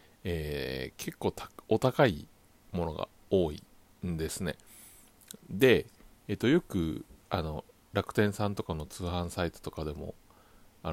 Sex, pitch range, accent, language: male, 85-125 Hz, native, Japanese